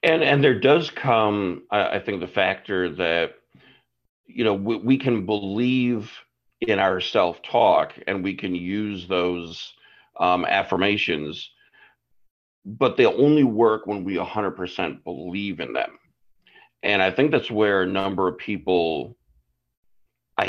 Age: 50-69